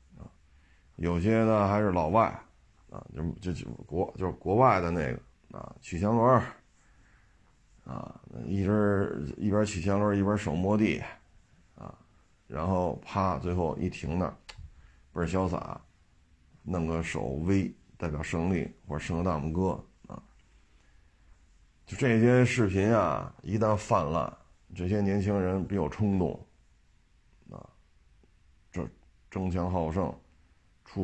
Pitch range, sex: 80-100 Hz, male